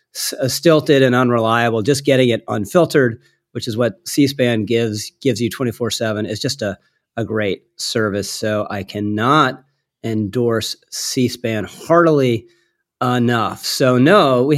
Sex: male